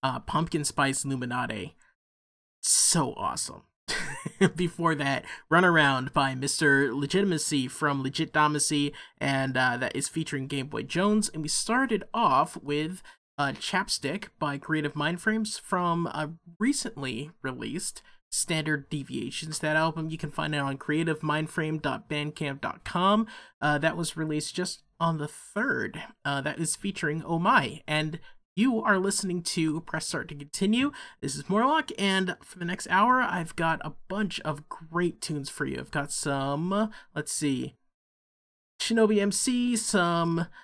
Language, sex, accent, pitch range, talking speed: English, male, American, 150-190 Hz, 140 wpm